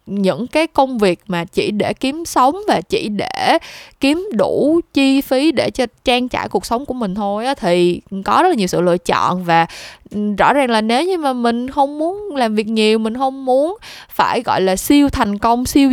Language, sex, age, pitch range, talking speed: Vietnamese, female, 20-39, 190-265 Hz, 215 wpm